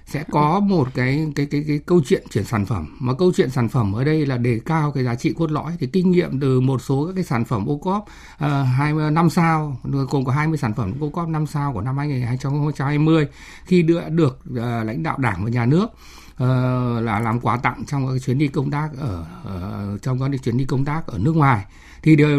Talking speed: 245 wpm